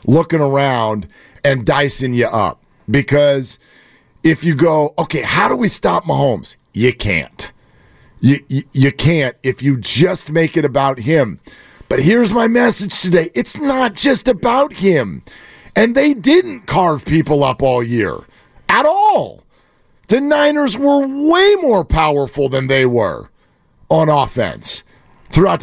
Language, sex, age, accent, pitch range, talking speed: English, male, 50-69, American, 145-240 Hz, 140 wpm